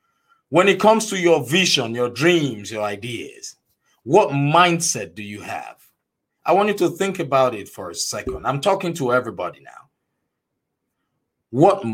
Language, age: English, 50-69